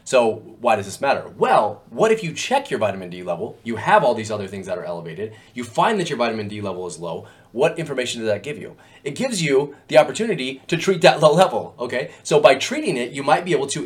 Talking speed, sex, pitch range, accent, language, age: 250 wpm, male, 105-150 Hz, American, English, 30-49